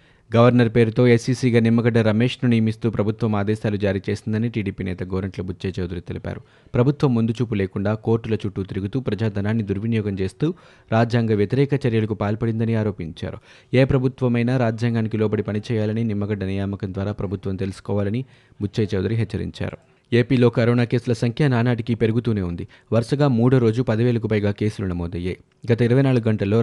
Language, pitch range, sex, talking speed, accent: Telugu, 100-120 Hz, male, 135 wpm, native